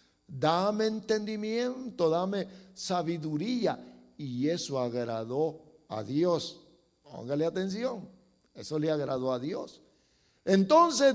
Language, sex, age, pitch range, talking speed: English, male, 50-69, 155-230 Hz, 90 wpm